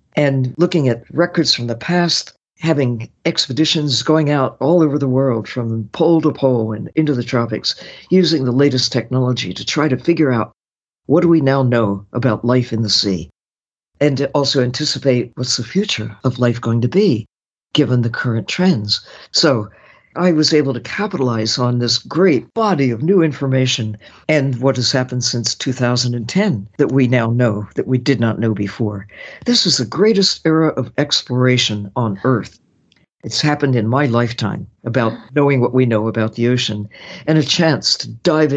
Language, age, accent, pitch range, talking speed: English, 60-79, American, 115-150 Hz, 175 wpm